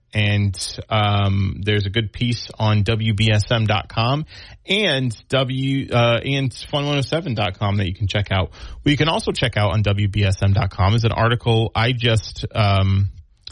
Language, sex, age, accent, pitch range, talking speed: English, male, 30-49, American, 100-120 Hz, 140 wpm